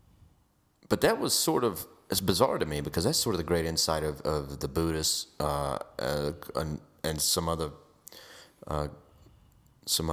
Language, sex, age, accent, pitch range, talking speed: English, male, 30-49, American, 75-85 Hz, 155 wpm